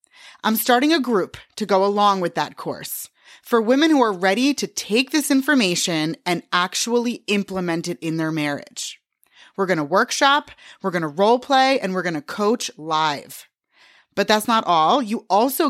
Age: 20-39